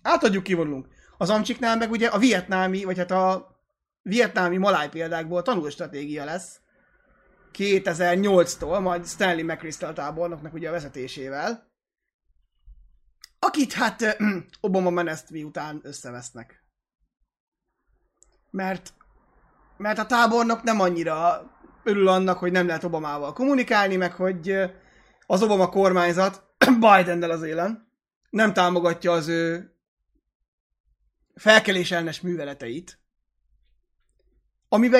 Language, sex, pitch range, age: Hungarian, male, 165-200 Hz, 30-49